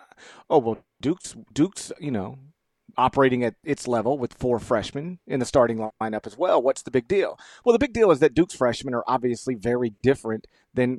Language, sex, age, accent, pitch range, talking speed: English, male, 40-59, American, 120-150 Hz, 195 wpm